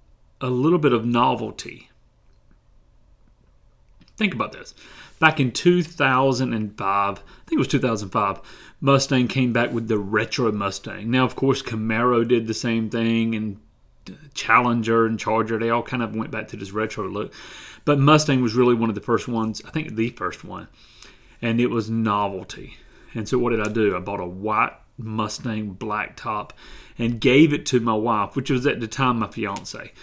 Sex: male